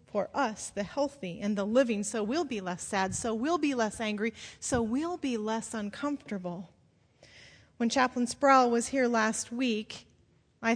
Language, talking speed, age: English, 165 wpm, 30-49